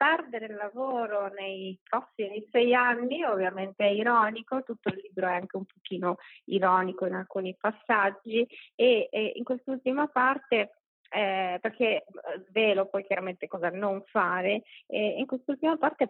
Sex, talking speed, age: female, 145 wpm, 30-49